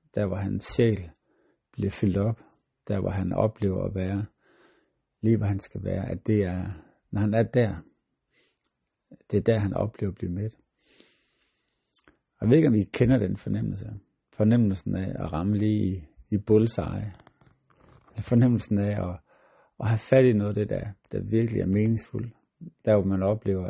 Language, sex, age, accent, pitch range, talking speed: Danish, male, 60-79, native, 95-110 Hz, 170 wpm